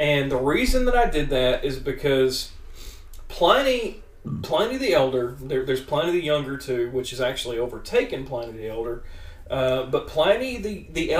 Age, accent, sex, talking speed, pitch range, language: 40-59, American, male, 165 wpm, 120-180 Hz, English